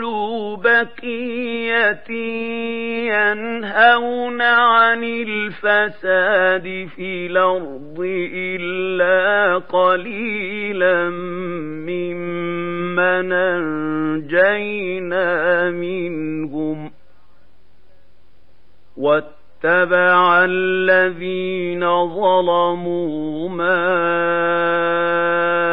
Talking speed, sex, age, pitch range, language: 35 wpm, male, 40-59, 175-230 Hz, Arabic